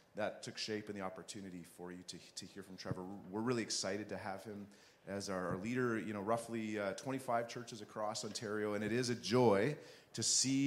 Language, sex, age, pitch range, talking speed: English, male, 30-49, 105-125 Hz, 210 wpm